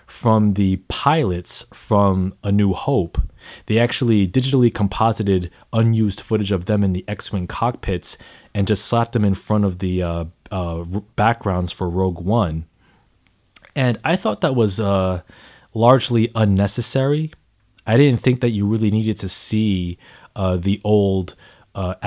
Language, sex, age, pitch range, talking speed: English, male, 20-39, 90-110 Hz, 145 wpm